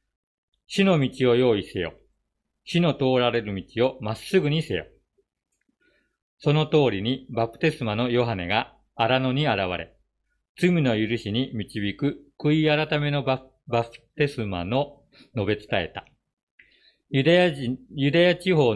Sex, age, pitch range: male, 50-69, 115-145 Hz